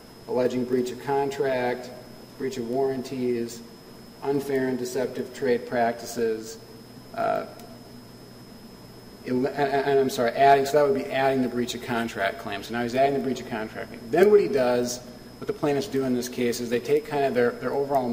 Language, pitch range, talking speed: English, 115-140 Hz, 180 wpm